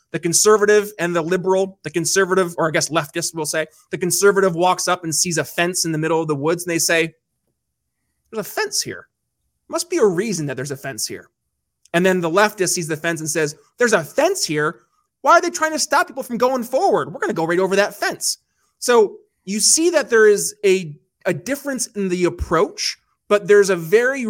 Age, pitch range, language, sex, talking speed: 30-49, 170-225 Hz, English, male, 220 wpm